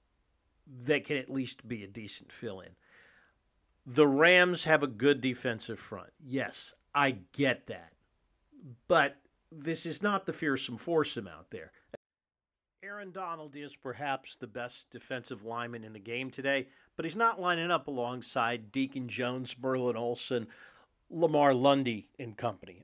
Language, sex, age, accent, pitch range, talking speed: English, male, 50-69, American, 110-145 Hz, 145 wpm